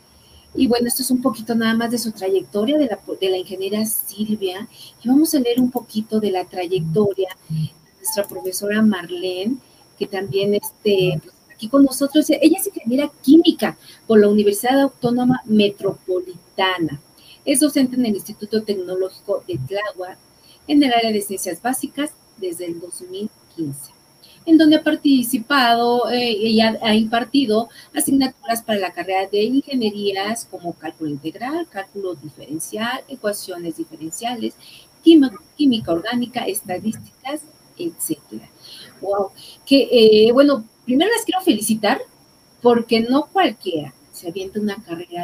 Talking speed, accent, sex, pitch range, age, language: 135 wpm, Mexican, female, 190-245 Hz, 40-59, Spanish